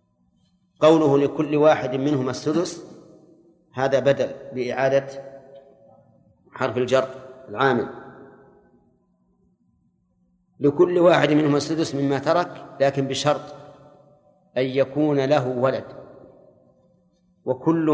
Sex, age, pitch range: male, 50-69, 135-155 Hz